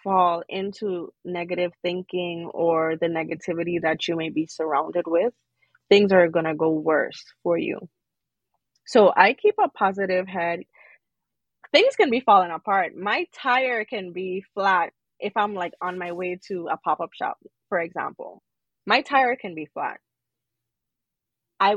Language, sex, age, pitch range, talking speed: English, female, 20-39, 175-225 Hz, 150 wpm